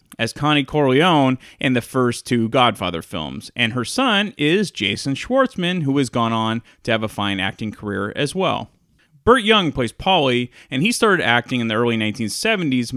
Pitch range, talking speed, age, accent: 120-175 Hz, 180 wpm, 30-49, American